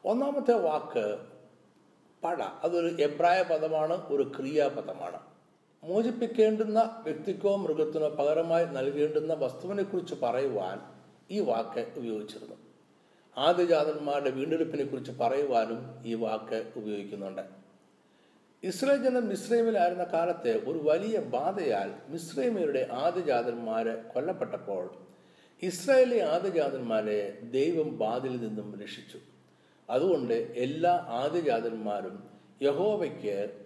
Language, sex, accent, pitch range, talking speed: Malayalam, male, native, 115-175 Hz, 80 wpm